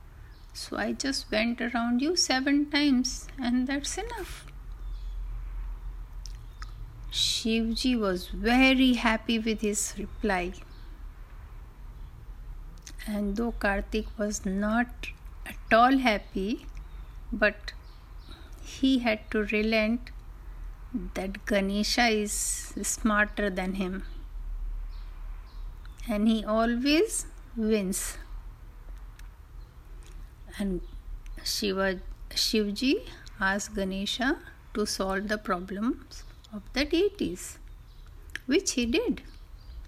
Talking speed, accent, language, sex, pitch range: 85 wpm, native, Hindi, female, 185-245 Hz